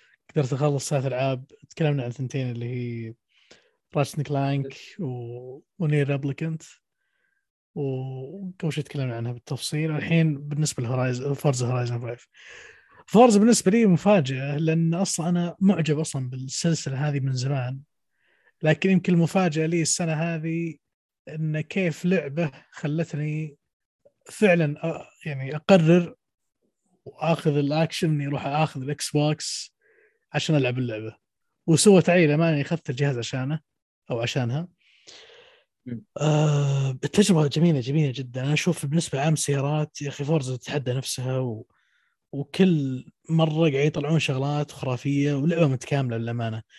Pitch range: 130-160 Hz